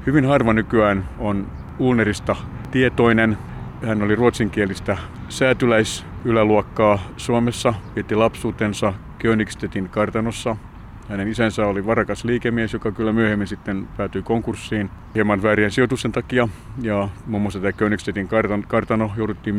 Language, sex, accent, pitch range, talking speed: Finnish, male, native, 100-115 Hz, 115 wpm